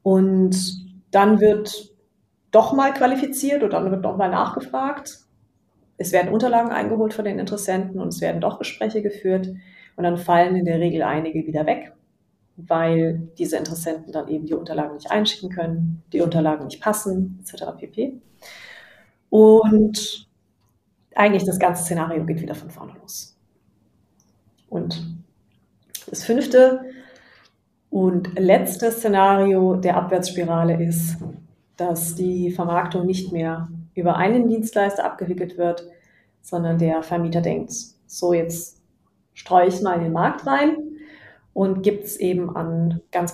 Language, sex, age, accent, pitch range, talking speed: German, female, 30-49, German, 165-205 Hz, 135 wpm